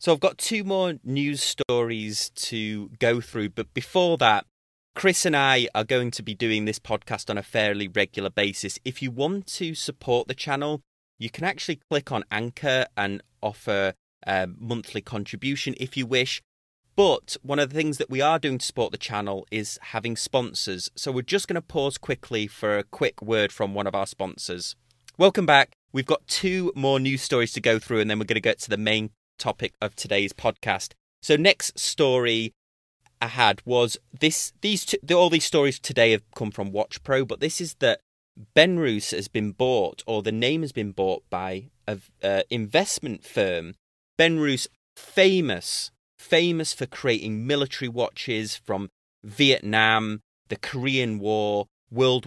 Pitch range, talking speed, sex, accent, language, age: 105-145 Hz, 180 wpm, male, British, English, 30-49